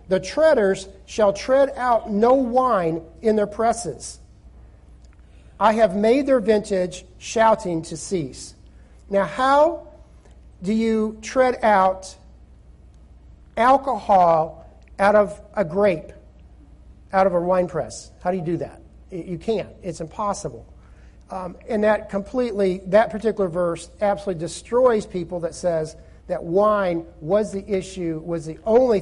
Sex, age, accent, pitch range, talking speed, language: male, 50-69, American, 165-215 Hz, 130 wpm, English